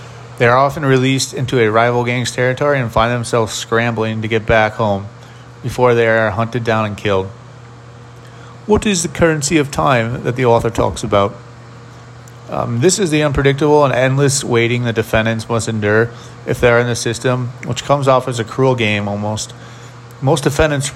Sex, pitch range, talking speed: male, 115-130 Hz, 180 wpm